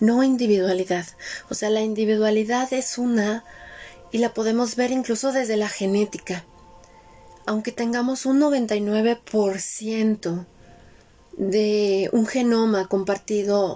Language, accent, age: Spanish, Mexican, 30-49